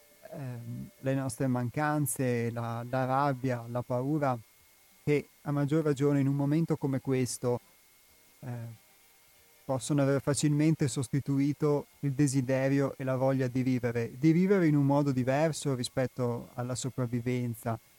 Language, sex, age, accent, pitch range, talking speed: Italian, male, 30-49, native, 125-150 Hz, 125 wpm